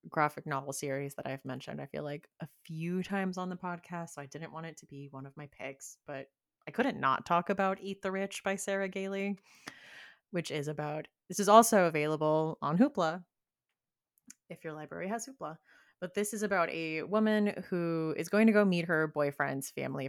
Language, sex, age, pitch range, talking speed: English, female, 30-49, 145-190 Hz, 200 wpm